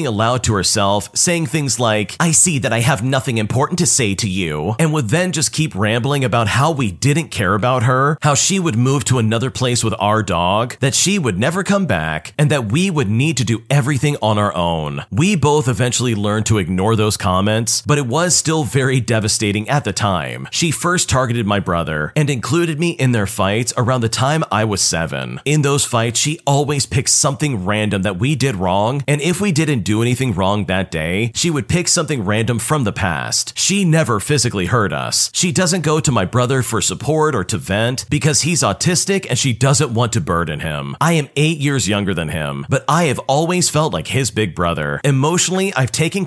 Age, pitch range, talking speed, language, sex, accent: 40-59, 105-150 Hz, 215 wpm, English, male, American